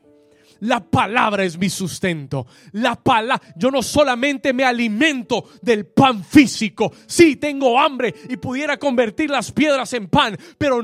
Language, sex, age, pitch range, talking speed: Spanish, male, 30-49, 215-300 Hz, 135 wpm